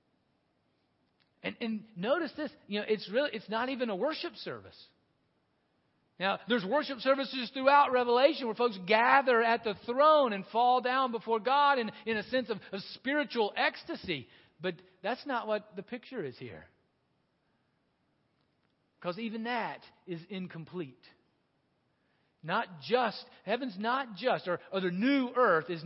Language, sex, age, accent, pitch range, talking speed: English, male, 40-59, American, 155-230 Hz, 145 wpm